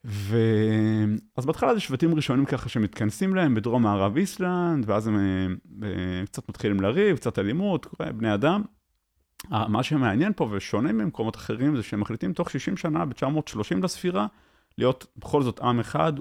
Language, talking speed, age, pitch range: Hebrew, 150 wpm, 30-49, 110-160 Hz